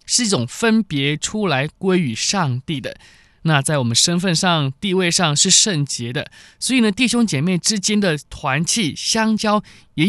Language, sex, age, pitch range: Chinese, male, 20-39, 140-200 Hz